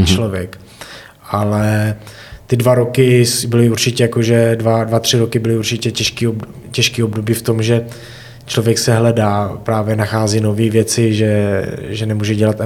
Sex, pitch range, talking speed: male, 105-115 Hz, 140 wpm